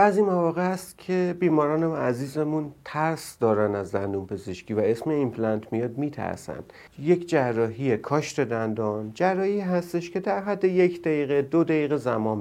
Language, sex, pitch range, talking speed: Persian, male, 115-155 Hz, 150 wpm